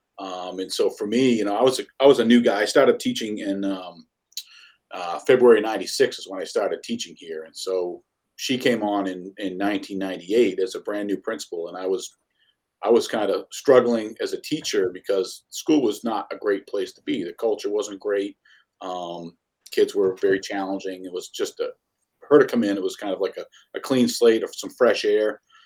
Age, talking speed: 40-59, 215 wpm